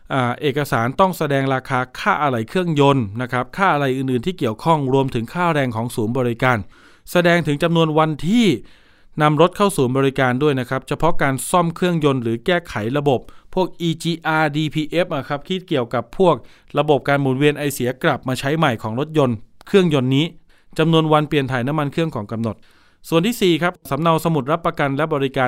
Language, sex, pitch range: Thai, male, 130-160 Hz